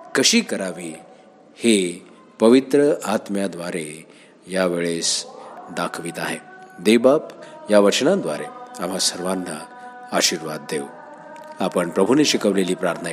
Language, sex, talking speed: Marathi, male, 80 wpm